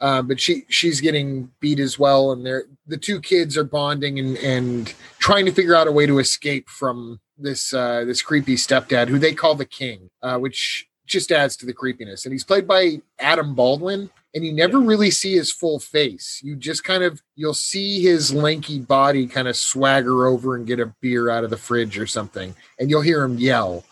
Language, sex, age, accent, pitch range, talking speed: English, male, 30-49, American, 125-150 Hz, 215 wpm